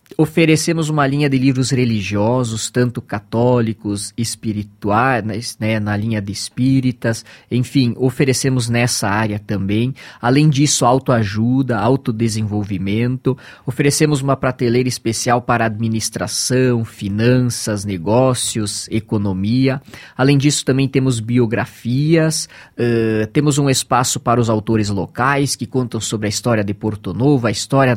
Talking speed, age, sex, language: 115 wpm, 20-39, male, Portuguese